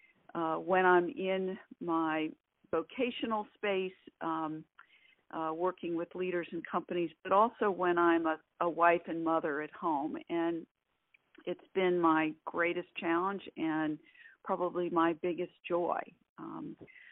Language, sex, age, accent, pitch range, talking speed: English, female, 50-69, American, 165-195 Hz, 130 wpm